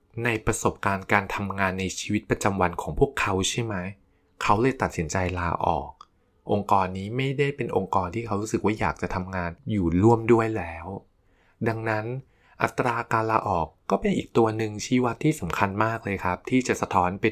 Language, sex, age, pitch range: Thai, male, 20-39, 95-125 Hz